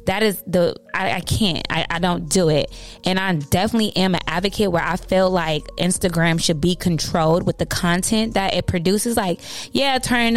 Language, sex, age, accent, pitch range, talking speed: English, female, 20-39, American, 165-200 Hz, 195 wpm